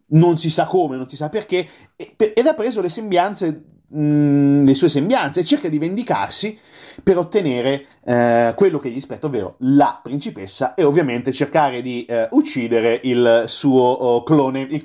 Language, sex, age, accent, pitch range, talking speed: Italian, male, 30-49, native, 120-165 Hz, 160 wpm